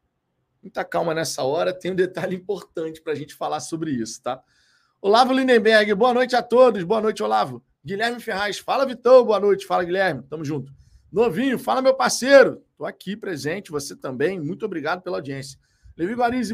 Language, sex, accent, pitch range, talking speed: Portuguese, male, Brazilian, 160-225 Hz, 180 wpm